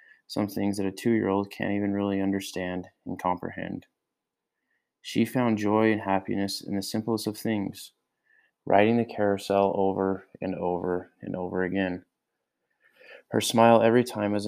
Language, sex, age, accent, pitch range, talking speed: English, male, 20-39, American, 95-110 Hz, 145 wpm